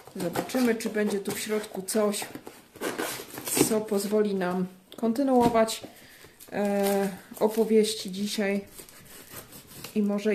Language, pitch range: Polish, 195-225 Hz